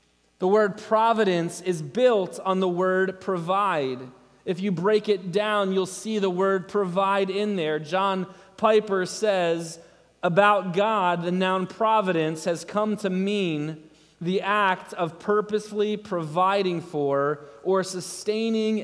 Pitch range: 165-210 Hz